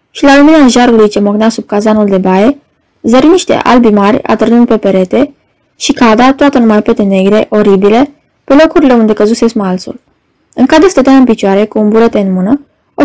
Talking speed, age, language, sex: 190 wpm, 20-39, Romanian, female